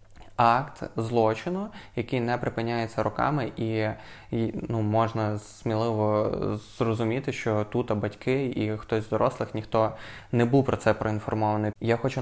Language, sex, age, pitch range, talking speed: Ukrainian, male, 20-39, 105-115 Hz, 135 wpm